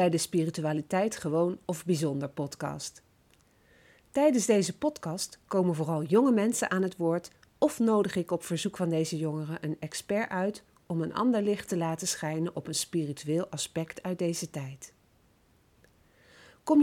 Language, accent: Dutch, Dutch